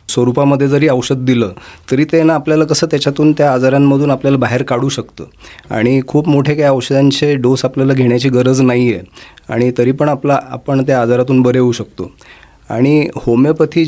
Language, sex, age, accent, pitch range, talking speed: Marathi, male, 30-49, native, 125-150 Hz, 160 wpm